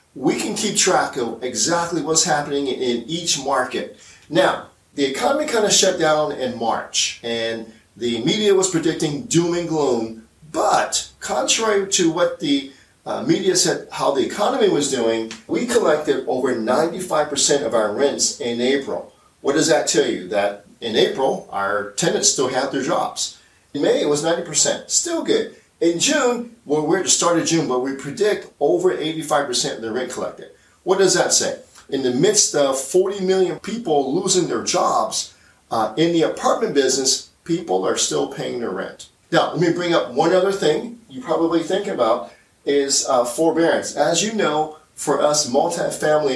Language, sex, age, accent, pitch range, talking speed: English, male, 40-59, American, 125-175 Hz, 175 wpm